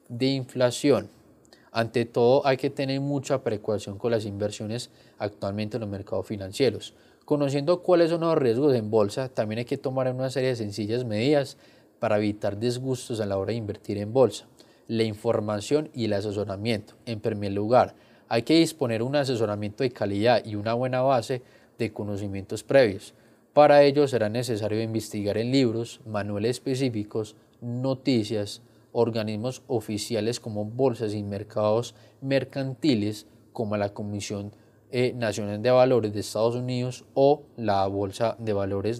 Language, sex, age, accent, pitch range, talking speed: Spanish, male, 20-39, Colombian, 105-130 Hz, 150 wpm